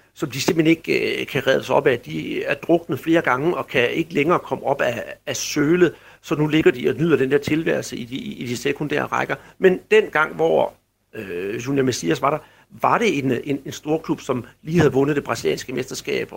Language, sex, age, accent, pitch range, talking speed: Danish, male, 60-79, native, 145-195 Hz, 225 wpm